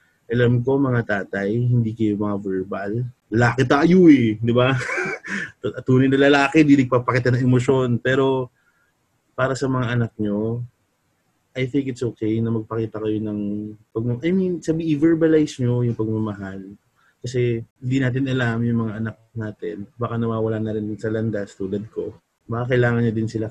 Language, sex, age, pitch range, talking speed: Filipino, male, 20-39, 110-130 Hz, 155 wpm